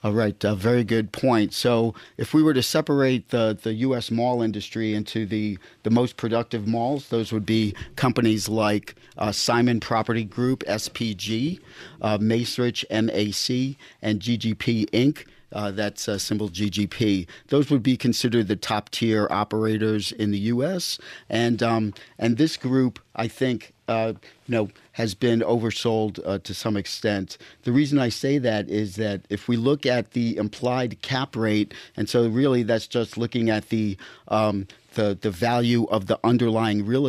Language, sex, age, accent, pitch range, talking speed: English, male, 50-69, American, 105-120 Hz, 165 wpm